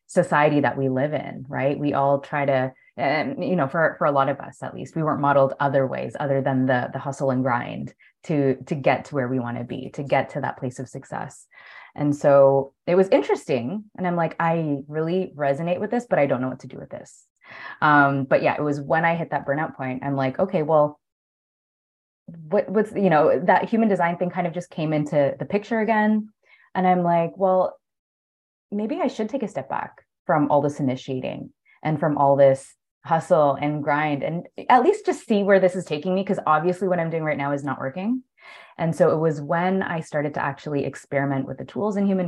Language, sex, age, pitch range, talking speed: English, female, 20-39, 140-180 Hz, 225 wpm